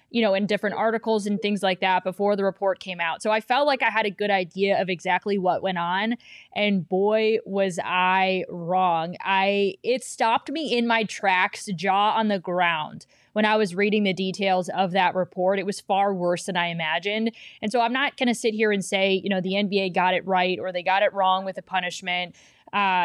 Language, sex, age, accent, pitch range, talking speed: English, female, 20-39, American, 185-220 Hz, 225 wpm